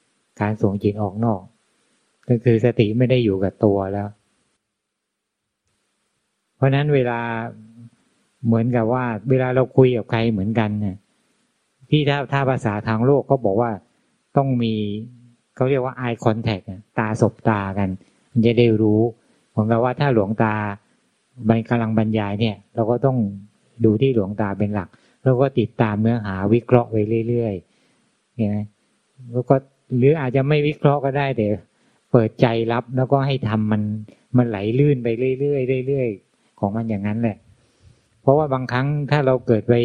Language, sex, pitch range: Thai, male, 110-130 Hz